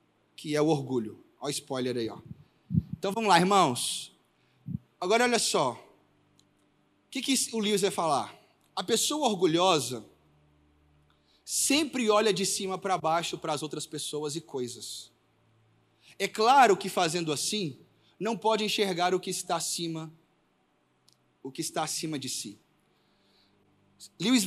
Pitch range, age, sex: 140-200 Hz, 20-39, male